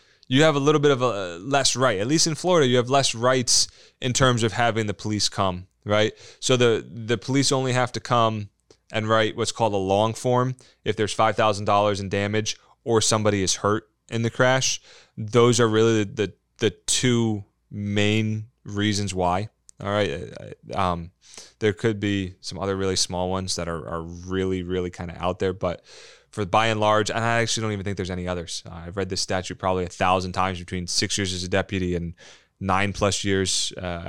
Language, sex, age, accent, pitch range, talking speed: English, male, 20-39, American, 95-125 Hz, 200 wpm